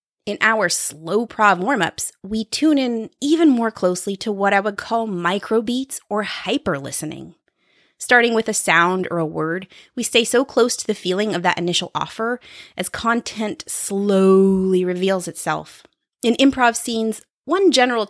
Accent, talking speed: American, 155 wpm